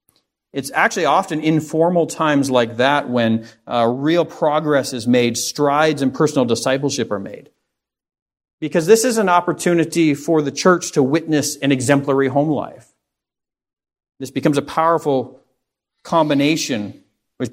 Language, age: English, 40-59